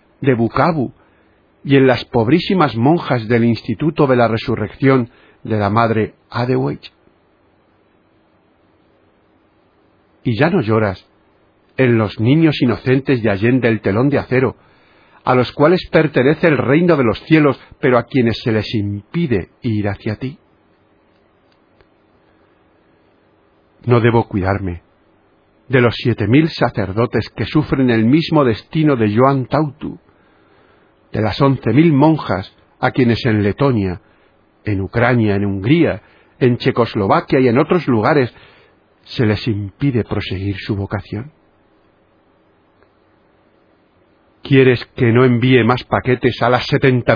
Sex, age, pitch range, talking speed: male, 50-69, 105-135 Hz, 125 wpm